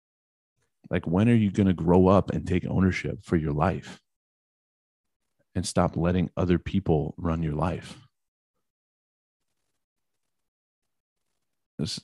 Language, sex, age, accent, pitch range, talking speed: English, male, 30-49, American, 80-95 Hz, 115 wpm